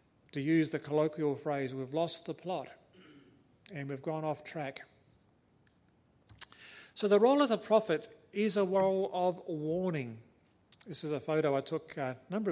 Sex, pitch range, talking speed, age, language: male, 135-165 Hz, 160 wpm, 40-59, English